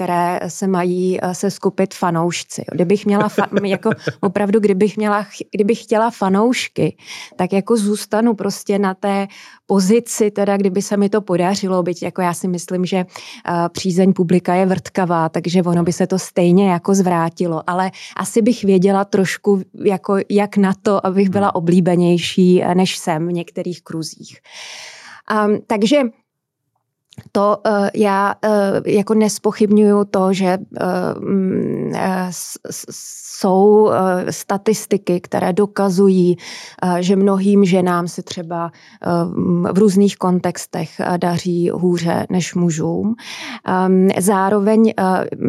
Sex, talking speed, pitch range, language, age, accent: female, 115 wpm, 180-205 Hz, Czech, 20-39, native